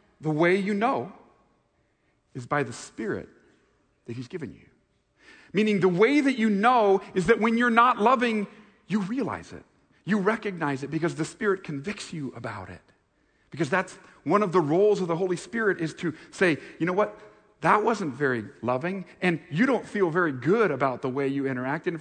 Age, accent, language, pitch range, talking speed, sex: 40-59, American, English, 135-195 Hz, 190 wpm, male